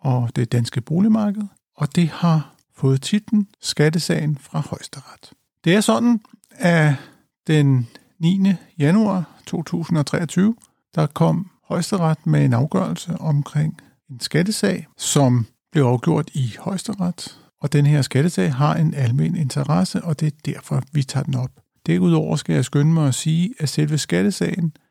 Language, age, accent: Danish, 50-69, native